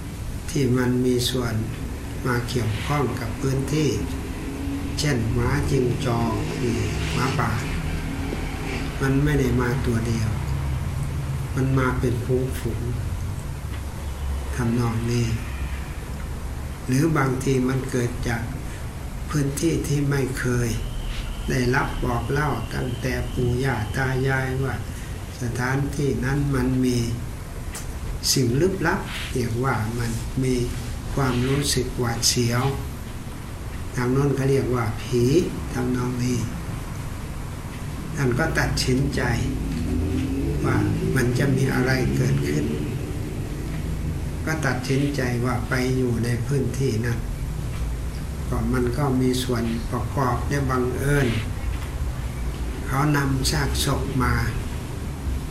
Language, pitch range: Portuguese, 100-130 Hz